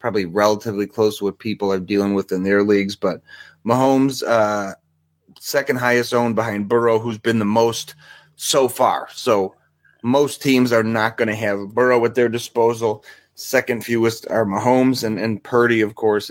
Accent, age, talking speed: American, 30-49, 170 wpm